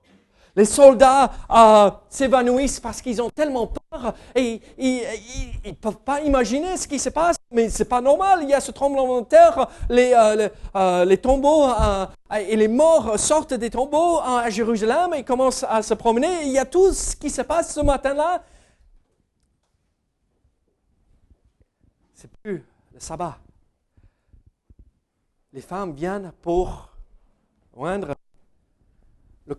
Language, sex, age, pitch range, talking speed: French, male, 50-69, 175-265 Hz, 150 wpm